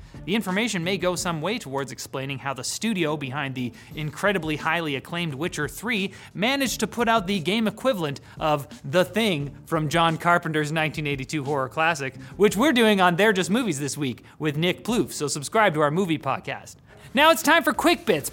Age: 30-49